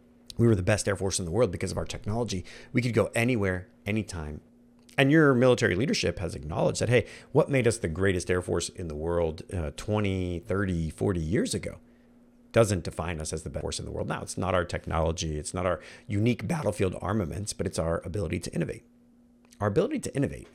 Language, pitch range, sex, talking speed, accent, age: English, 95-120 Hz, male, 215 wpm, American, 40-59